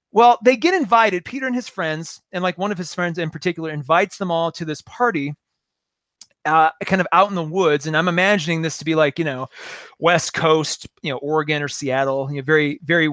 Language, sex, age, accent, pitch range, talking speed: English, male, 30-49, American, 145-190 Hz, 225 wpm